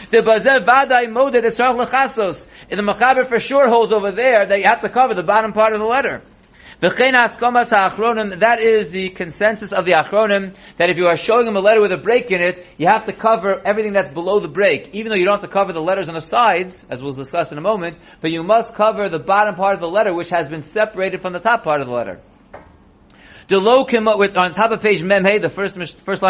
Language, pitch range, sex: English, 180-225 Hz, male